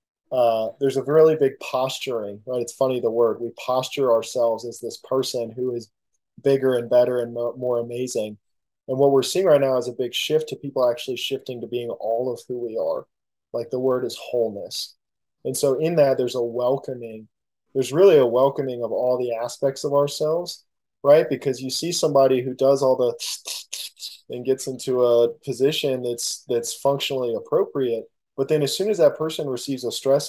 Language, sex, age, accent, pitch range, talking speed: English, male, 20-39, American, 120-140 Hz, 190 wpm